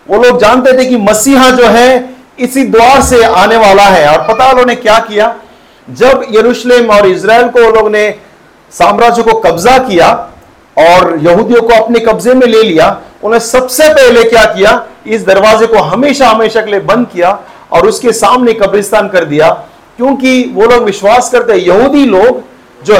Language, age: Hindi, 50-69